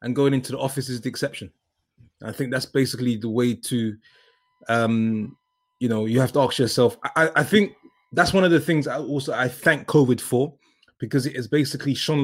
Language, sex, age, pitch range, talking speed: English, male, 20-39, 120-140 Hz, 205 wpm